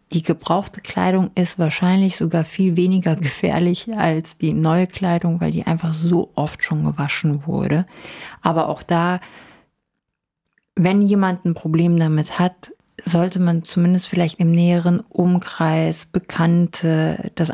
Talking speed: 135 wpm